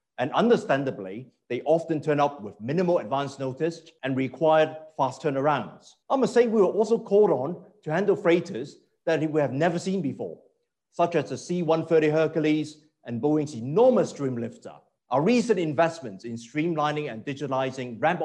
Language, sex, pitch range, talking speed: English, male, 130-170 Hz, 160 wpm